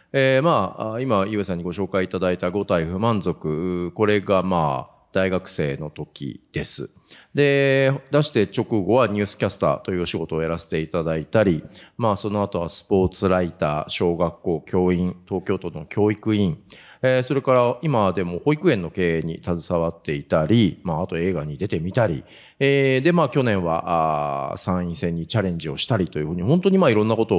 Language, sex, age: Japanese, male, 40-59